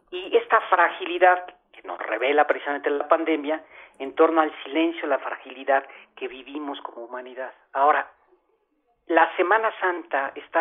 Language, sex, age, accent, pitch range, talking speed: Spanish, male, 40-59, Mexican, 135-180 Hz, 135 wpm